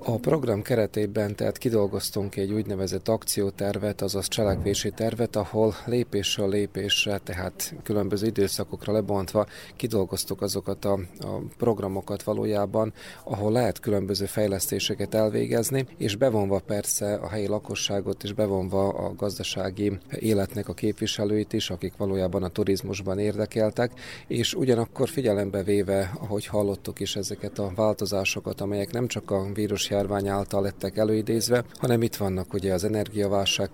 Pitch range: 100-110 Hz